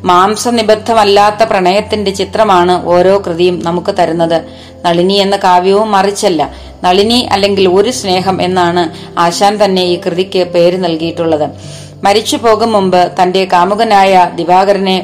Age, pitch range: 30-49, 175-205 Hz